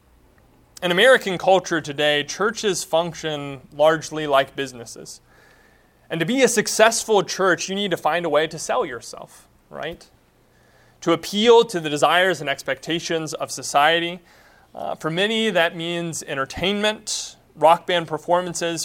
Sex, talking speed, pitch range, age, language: male, 135 wpm, 145-180 Hz, 30-49, English